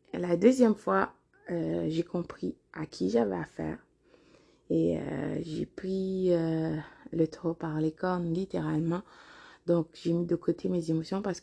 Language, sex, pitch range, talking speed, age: French, female, 165-195 Hz, 150 wpm, 20-39